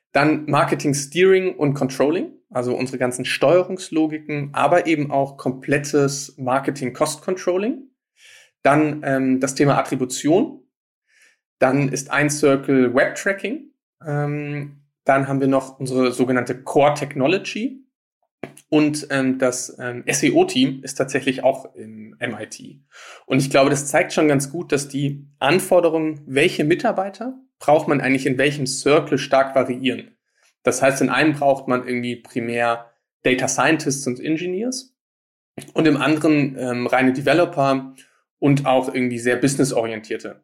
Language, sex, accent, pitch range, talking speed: German, male, German, 130-155 Hz, 125 wpm